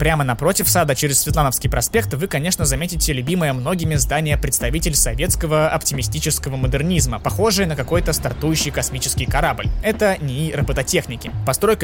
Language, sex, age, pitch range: Russian, male, 20-39, 130-170 Hz